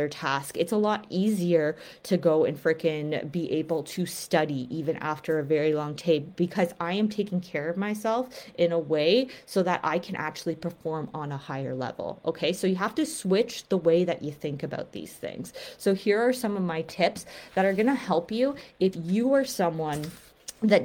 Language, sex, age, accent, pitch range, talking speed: English, female, 20-39, American, 160-205 Hz, 205 wpm